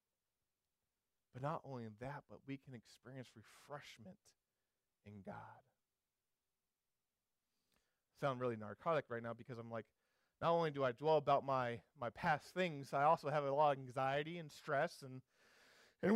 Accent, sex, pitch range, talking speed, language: American, male, 150-190 Hz, 150 wpm, English